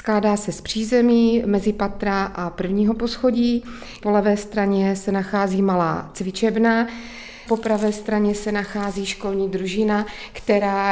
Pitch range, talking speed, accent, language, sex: 195-225 Hz, 130 wpm, native, Czech, female